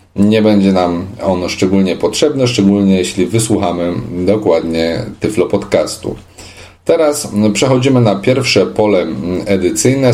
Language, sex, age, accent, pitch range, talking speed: Polish, male, 40-59, native, 95-130 Hz, 105 wpm